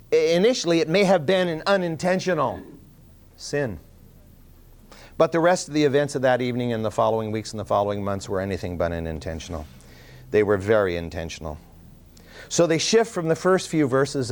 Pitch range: 100-145 Hz